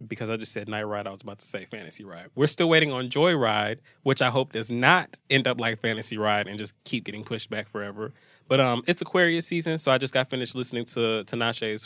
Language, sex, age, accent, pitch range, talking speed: English, male, 20-39, American, 115-155 Hz, 250 wpm